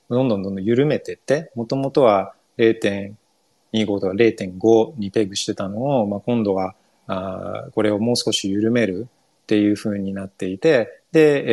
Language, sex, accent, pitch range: Japanese, male, native, 100-130 Hz